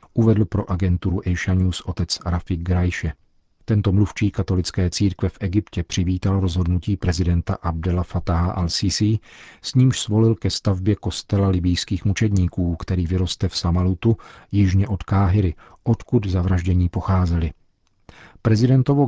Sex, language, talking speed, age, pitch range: male, Czech, 120 wpm, 40-59, 90-105 Hz